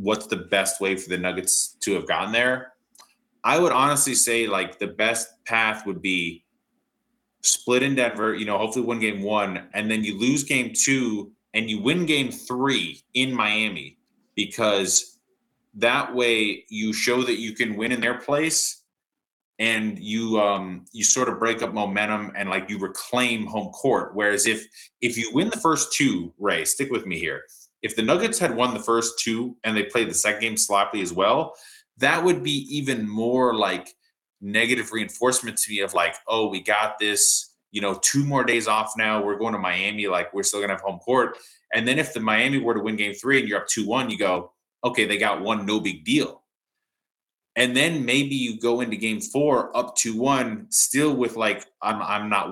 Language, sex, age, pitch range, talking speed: English, male, 20-39, 105-125 Hz, 200 wpm